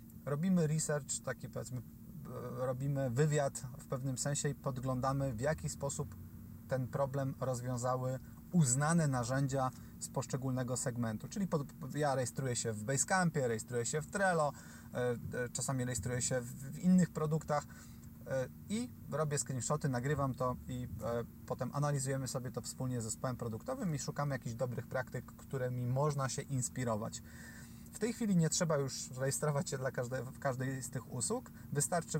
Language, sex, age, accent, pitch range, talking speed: Polish, male, 30-49, native, 125-145 Hz, 140 wpm